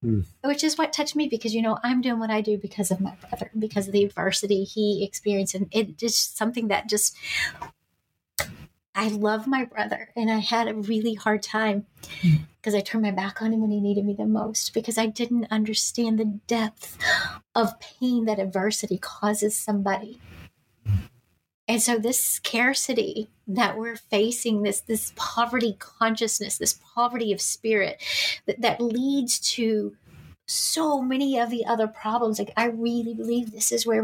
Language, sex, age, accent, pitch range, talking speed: English, female, 30-49, American, 205-235 Hz, 170 wpm